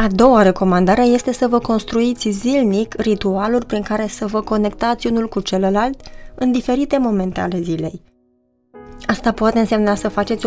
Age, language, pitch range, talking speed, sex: 20-39, Romanian, 185-235 Hz, 155 wpm, female